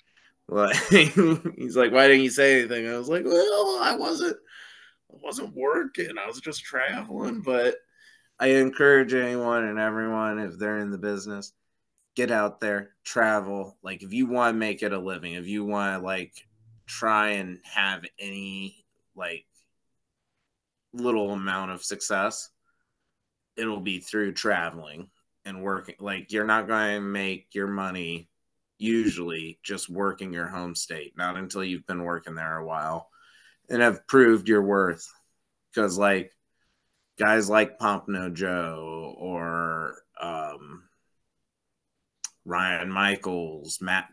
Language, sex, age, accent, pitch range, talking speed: English, male, 20-39, American, 90-110 Hz, 140 wpm